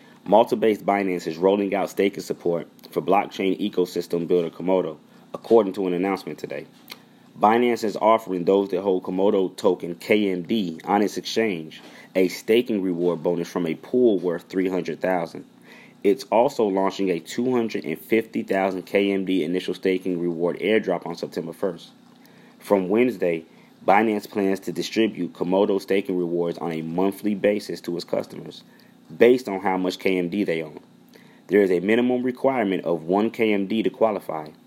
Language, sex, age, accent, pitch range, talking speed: English, male, 30-49, American, 90-105 Hz, 145 wpm